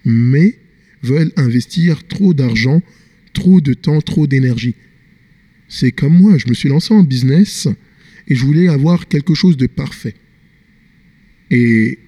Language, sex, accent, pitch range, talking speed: French, male, French, 125-180 Hz, 140 wpm